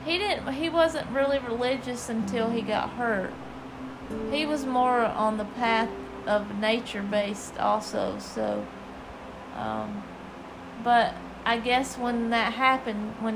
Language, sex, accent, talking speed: English, female, American, 125 wpm